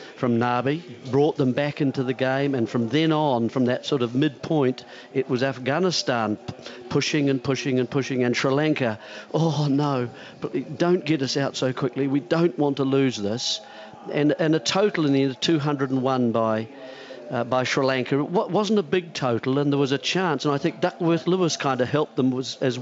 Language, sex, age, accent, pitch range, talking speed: English, male, 50-69, British, 125-150 Hz, 205 wpm